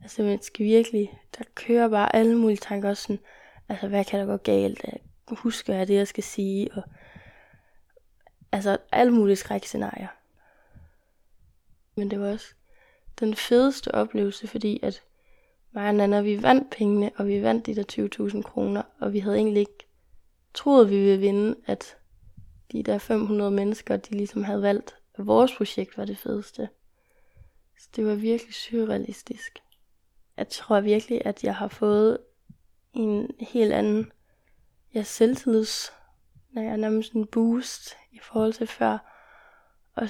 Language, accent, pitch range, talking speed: Danish, native, 205-230 Hz, 150 wpm